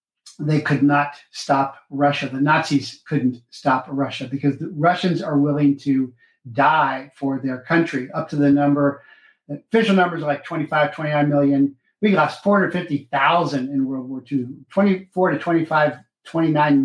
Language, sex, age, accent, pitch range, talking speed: English, male, 50-69, American, 140-170 Hz, 150 wpm